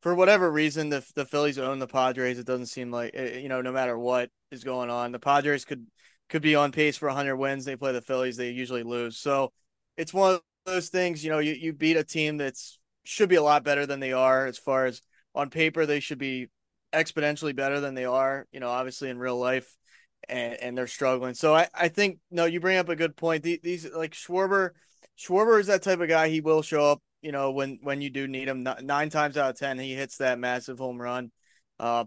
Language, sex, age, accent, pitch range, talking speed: English, male, 20-39, American, 130-160 Hz, 240 wpm